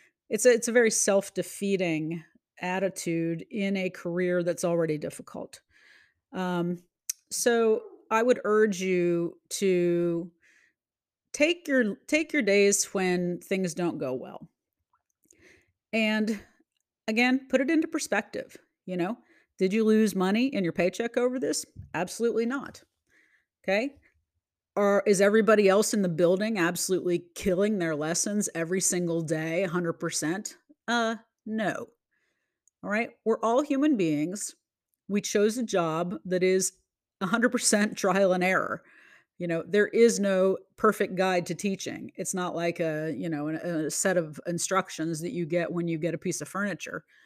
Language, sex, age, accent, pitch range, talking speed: English, female, 40-59, American, 175-230 Hz, 145 wpm